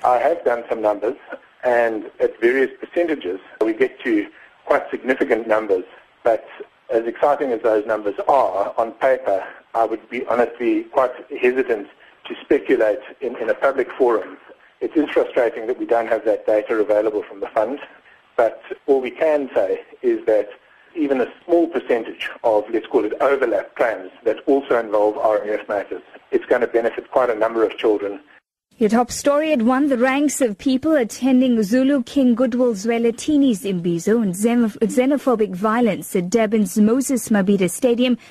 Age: 60-79